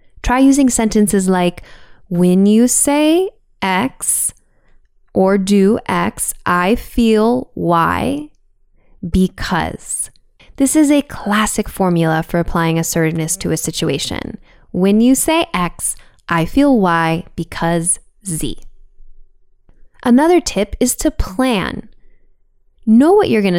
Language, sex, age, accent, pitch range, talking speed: English, female, 10-29, American, 175-245 Hz, 110 wpm